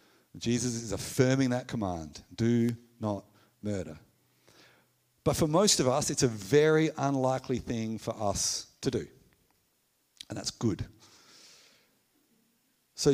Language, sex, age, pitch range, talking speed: English, male, 50-69, 115-145 Hz, 120 wpm